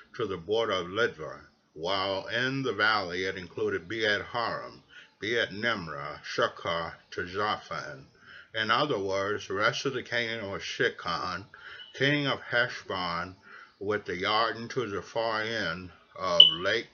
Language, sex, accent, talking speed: English, male, American, 140 wpm